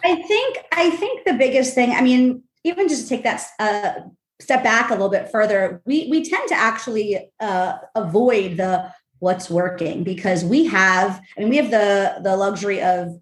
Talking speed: 190 wpm